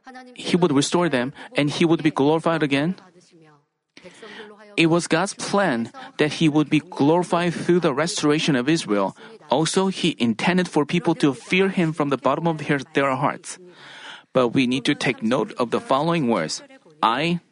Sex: male